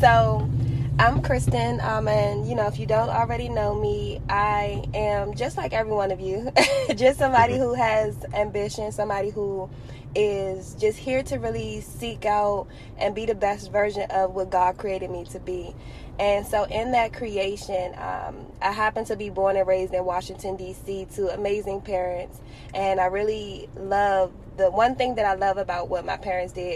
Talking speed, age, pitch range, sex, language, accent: 180 wpm, 20-39, 180-215 Hz, female, English, American